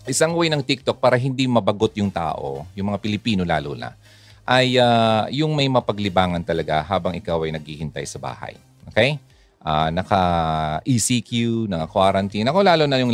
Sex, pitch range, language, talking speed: male, 95-130 Hz, Filipino, 170 wpm